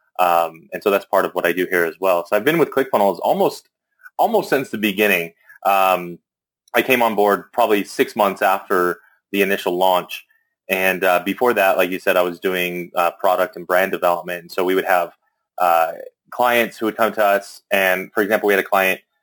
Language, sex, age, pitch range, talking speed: English, male, 30-49, 90-105 Hz, 210 wpm